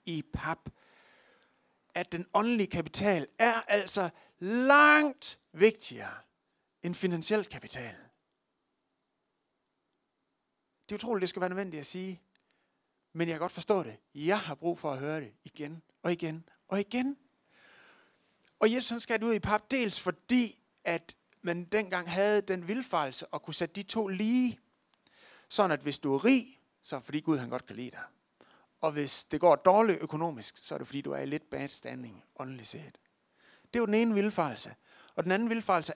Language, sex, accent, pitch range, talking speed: Danish, male, native, 150-210 Hz, 170 wpm